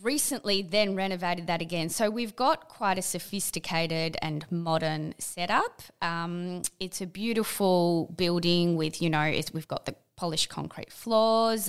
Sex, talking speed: female, 145 wpm